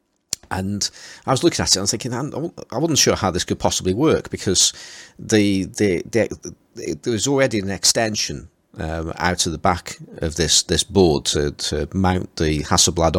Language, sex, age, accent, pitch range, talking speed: English, male, 40-59, British, 85-100 Hz, 195 wpm